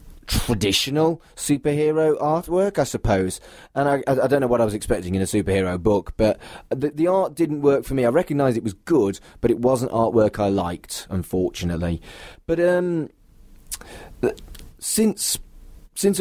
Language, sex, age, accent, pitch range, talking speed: English, male, 30-49, British, 100-135 Hz, 160 wpm